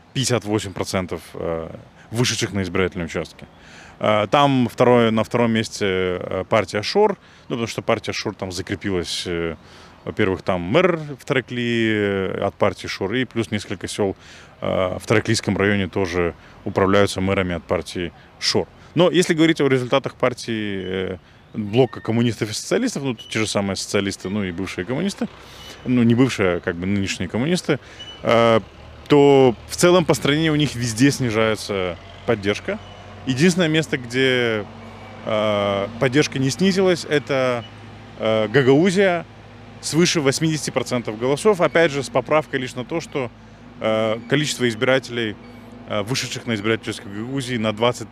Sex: male